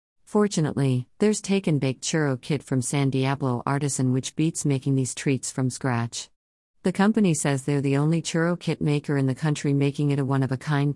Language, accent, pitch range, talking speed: English, American, 135-160 Hz, 195 wpm